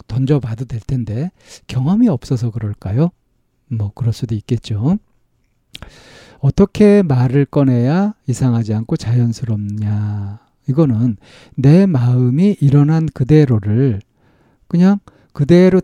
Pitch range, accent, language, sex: 115-165 Hz, native, Korean, male